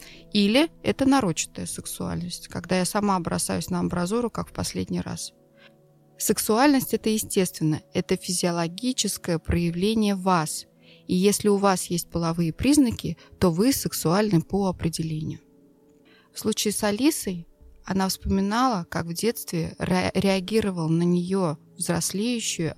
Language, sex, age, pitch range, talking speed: Russian, female, 20-39, 165-205 Hz, 120 wpm